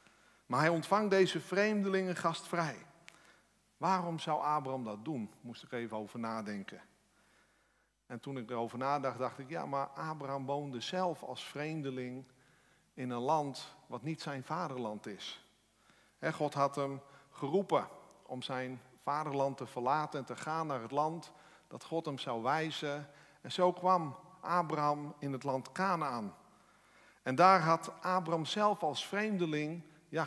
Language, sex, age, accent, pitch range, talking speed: Dutch, male, 50-69, Dutch, 130-170 Hz, 145 wpm